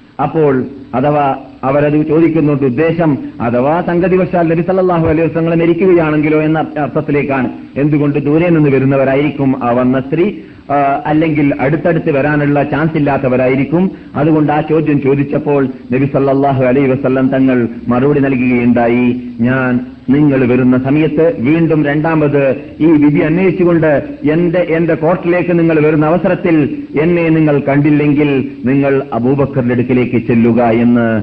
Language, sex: Malayalam, male